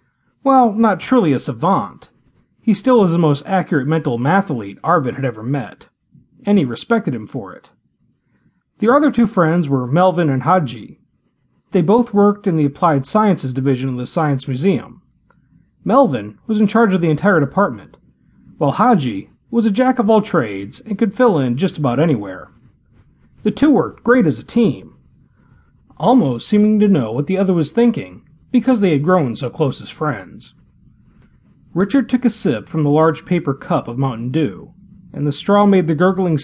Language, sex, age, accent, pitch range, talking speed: English, male, 40-59, American, 140-230 Hz, 175 wpm